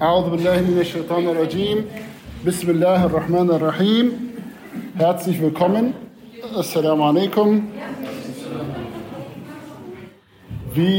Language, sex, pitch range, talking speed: German, male, 150-195 Hz, 70 wpm